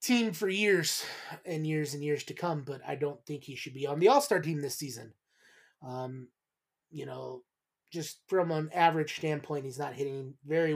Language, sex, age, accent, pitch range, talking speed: English, male, 20-39, American, 140-170 Hz, 190 wpm